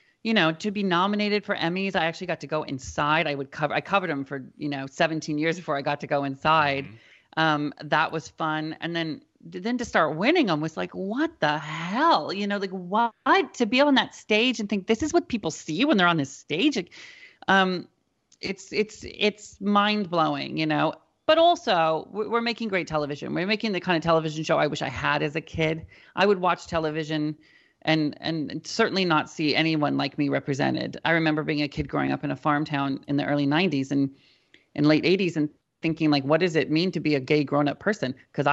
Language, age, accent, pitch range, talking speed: English, 30-49, American, 150-195 Hz, 220 wpm